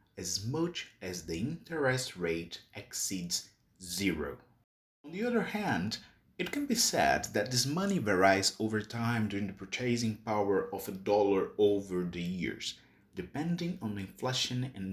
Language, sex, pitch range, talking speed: English, male, 100-150 Hz, 150 wpm